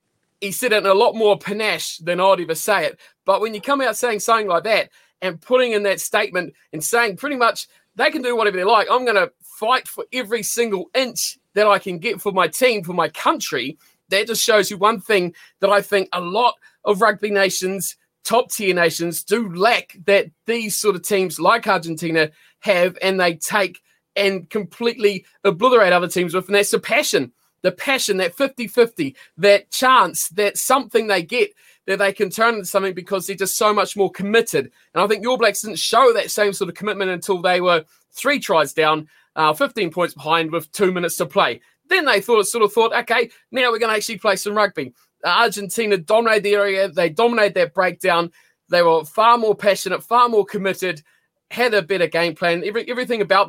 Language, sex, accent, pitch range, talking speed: English, male, Australian, 180-225 Hz, 210 wpm